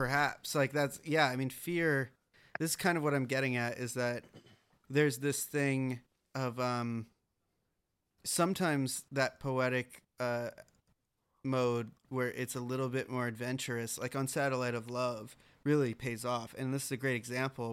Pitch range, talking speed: 120-140 Hz, 165 wpm